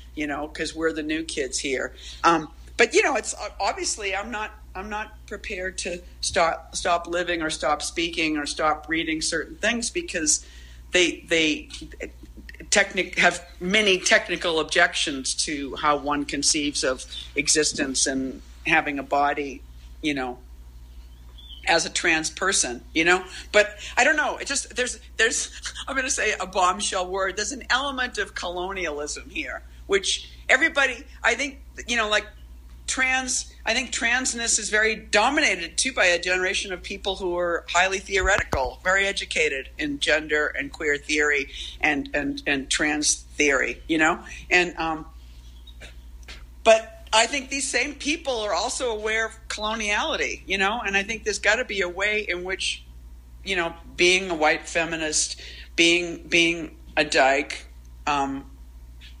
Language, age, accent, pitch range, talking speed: English, 50-69, American, 145-215 Hz, 155 wpm